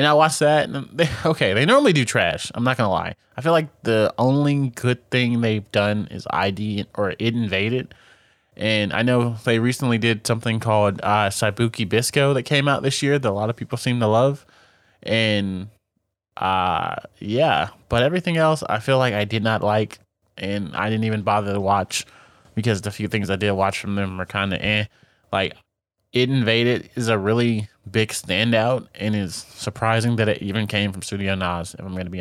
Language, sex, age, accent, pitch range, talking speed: English, male, 20-39, American, 100-120 Hz, 205 wpm